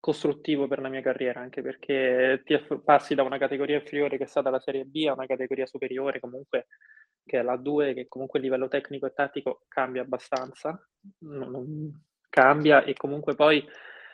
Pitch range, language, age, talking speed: 130-155 Hz, Italian, 20-39, 185 wpm